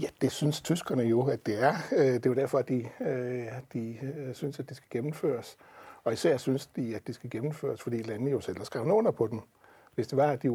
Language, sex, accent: Danish, male, native